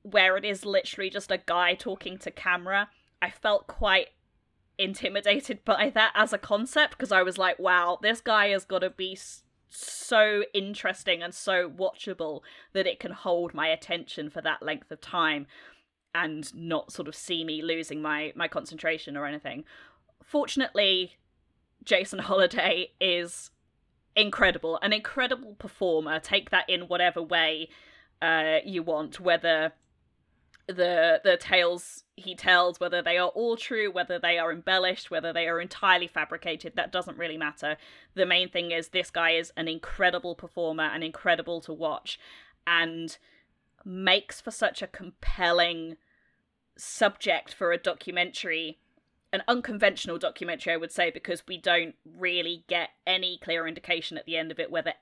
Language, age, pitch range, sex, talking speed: English, 20-39, 165-200 Hz, female, 155 wpm